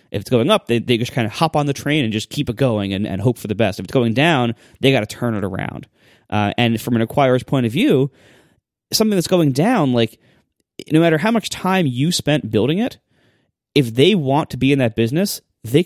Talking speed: 245 wpm